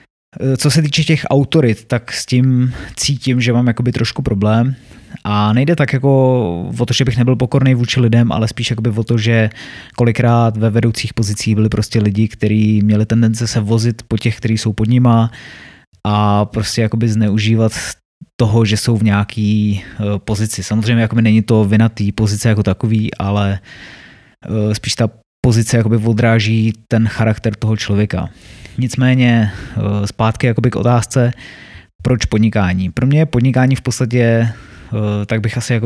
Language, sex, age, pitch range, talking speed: Czech, male, 20-39, 110-125 Hz, 155 wpm